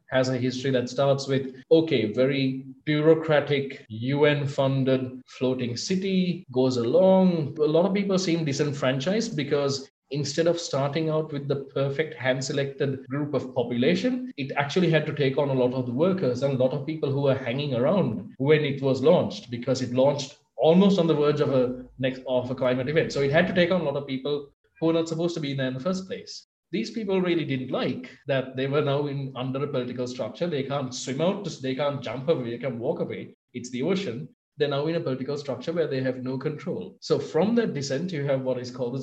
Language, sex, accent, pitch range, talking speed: English, male, Indian, 130-155 Hz, 215 wpm